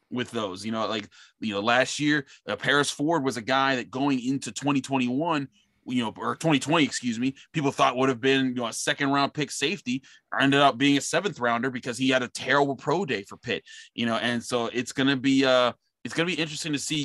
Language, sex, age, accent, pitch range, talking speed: English, male, 20-39, American, 120-145 Hz, 245 wpm